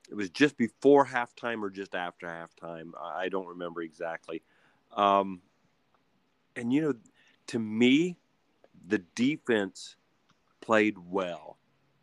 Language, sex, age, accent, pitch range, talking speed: English, male, 40-59, American, 90-110 Hz, 115 wpm